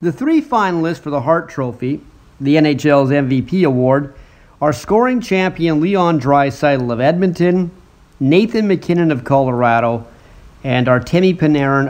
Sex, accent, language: male, American, English